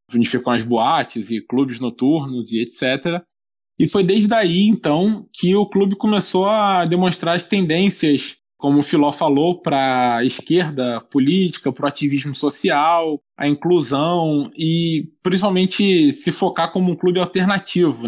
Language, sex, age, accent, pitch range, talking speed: Portuguese, male, 20-39, Brazilian, 135-190 Hz, 145 wpm